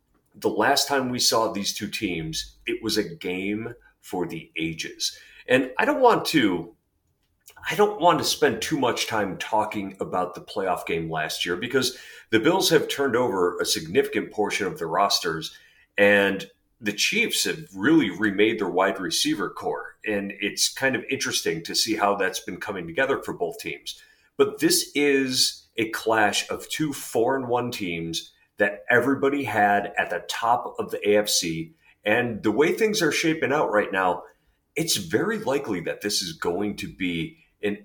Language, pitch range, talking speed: English, 100-170 Hz, 175 wpm